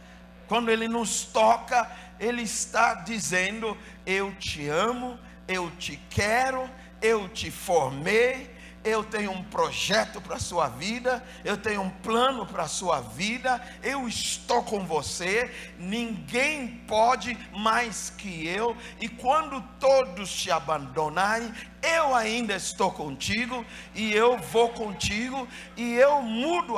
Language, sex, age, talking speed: Portuguese, male, 60-79, 130 wpm